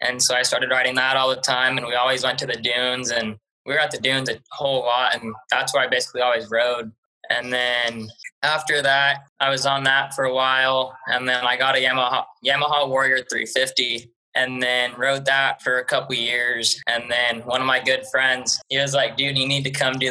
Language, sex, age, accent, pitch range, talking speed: English, male, 20-39, American, 125-135 Hz, 230 wpm